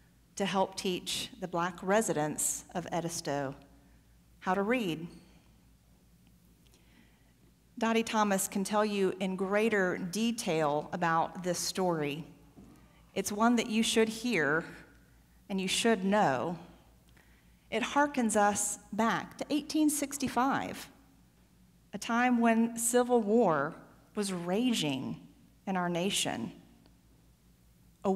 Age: 40-59